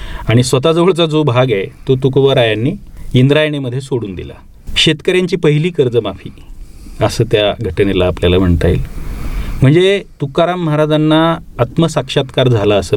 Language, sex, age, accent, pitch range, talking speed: Marathi, male, 40-59, native, 95-145 Hz, 115 wpm